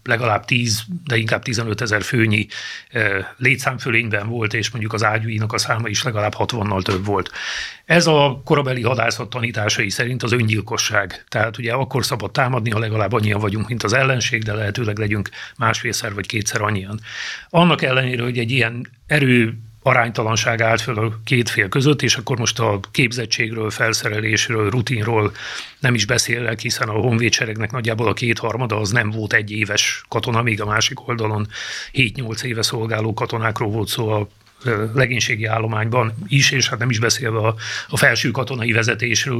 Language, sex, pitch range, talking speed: Hungarian, male, 110-125 Hz, 160 wpm